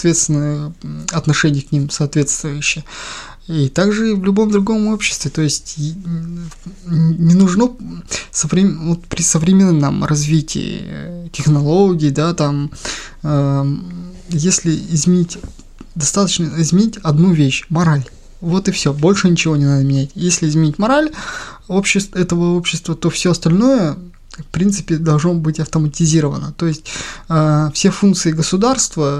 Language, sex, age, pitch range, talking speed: Russian, male, 20-39, 150-180 Hz, 125 wpm